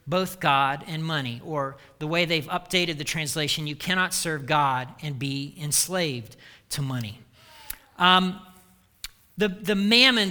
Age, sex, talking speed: 40-59, male, 140 wpm